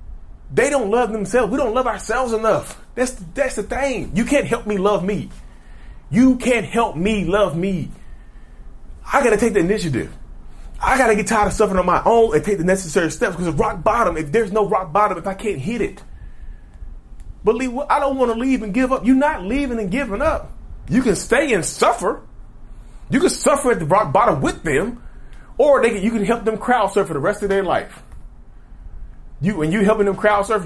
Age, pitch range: 30-49, 140-215 Hz